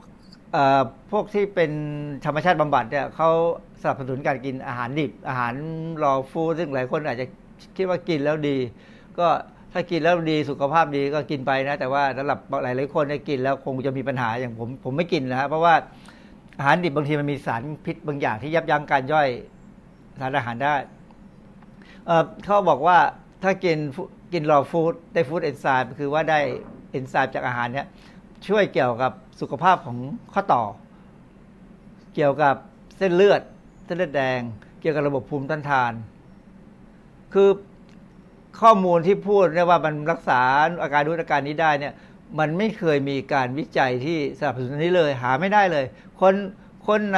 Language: Thai